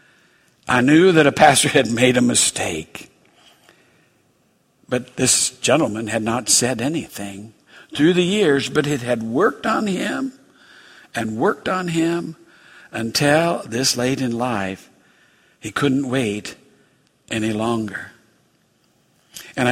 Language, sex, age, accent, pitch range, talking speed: English, male, 60-79, American, 115-155 Hz, 120 wpm